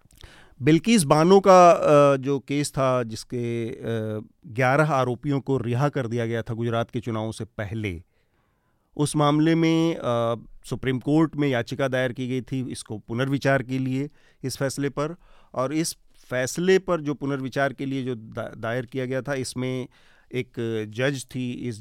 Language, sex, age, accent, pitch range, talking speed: Hindi, male, 40-59, native, 120-140 Hz, 155 wpm